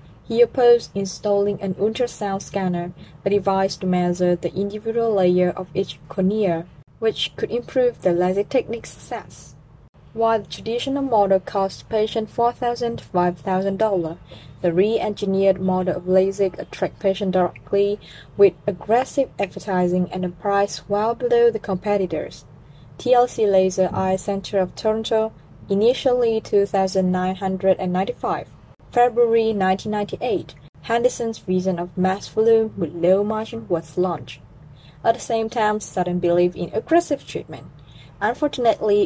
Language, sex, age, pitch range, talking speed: Vietnamese, female, 20-39, 175-220 Hz, 125 wpm